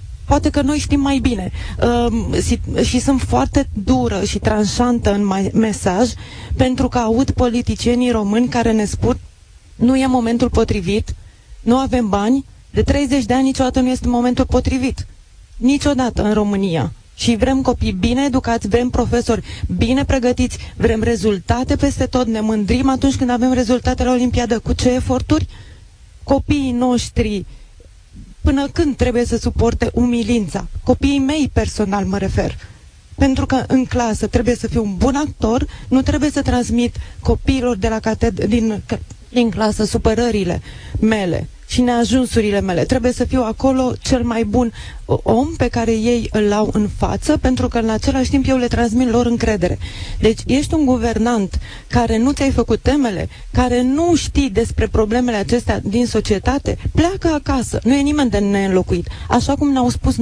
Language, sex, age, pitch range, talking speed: Romanian, female, 30-49, 215-260 Hz, 150 wpm